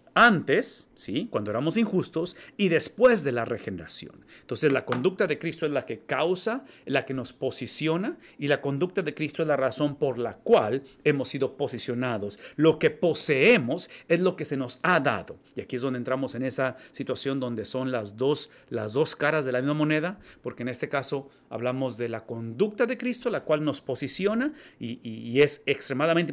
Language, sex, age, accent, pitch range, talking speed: English, male, 40-59, Mexican, 130-175 Hz, 195 wpm